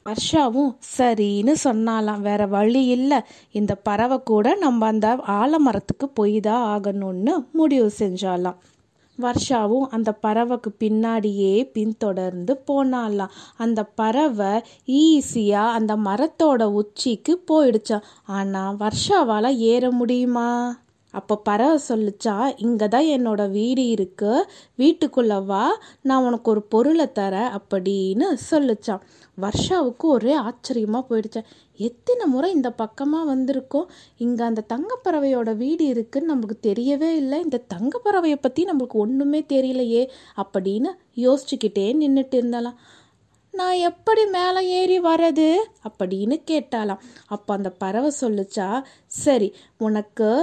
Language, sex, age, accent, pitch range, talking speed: Tamil, female, 20-39, native, 215-285 Hz, 110 wpm